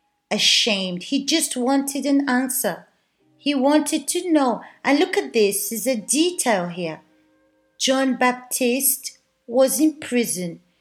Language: Portuguese